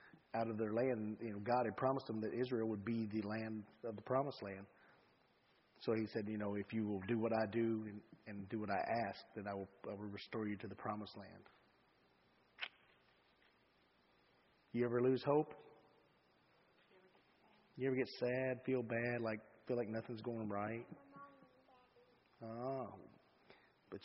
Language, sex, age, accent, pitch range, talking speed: English, male, 40-59, American, 100-115 Hz, 165 wpm